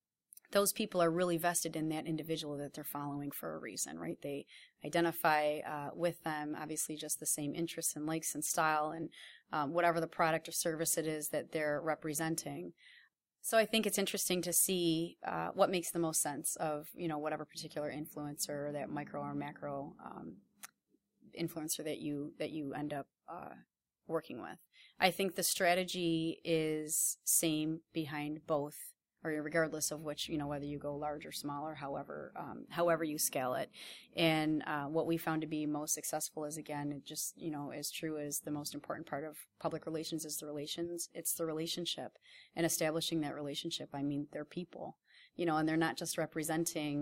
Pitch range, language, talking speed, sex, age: 150-165 Hz, English, 190 wpm, female, 30-49